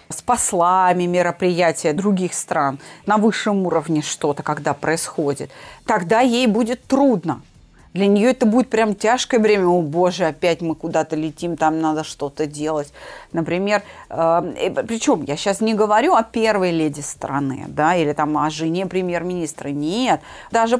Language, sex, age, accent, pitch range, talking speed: Russian, female, 30-49, native, 170-230 Hz, 145 wpm